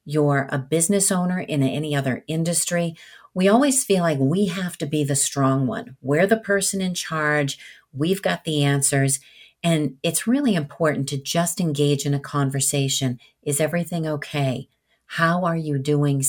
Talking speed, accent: 165 wpm, American